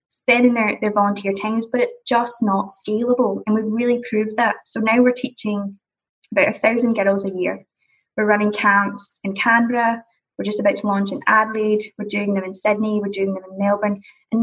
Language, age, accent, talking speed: English, 20-39, British, 200 wpm